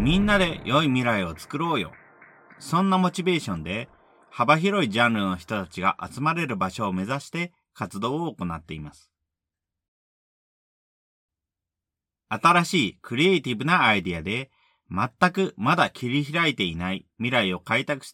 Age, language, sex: 40-59, Japanese, male